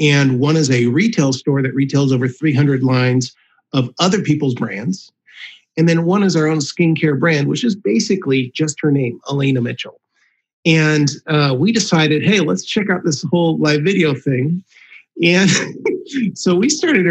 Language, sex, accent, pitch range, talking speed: English, male, American, 140-185 Hz, 170 wpm